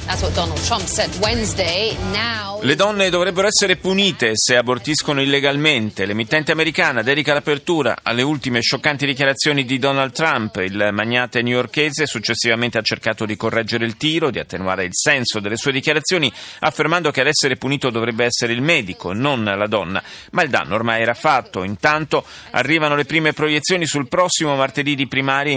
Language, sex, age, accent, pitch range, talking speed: Italian, male, 30-49, native, 110-150 Hz, 155 wpm